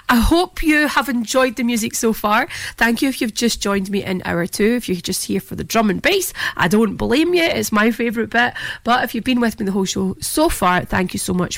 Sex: female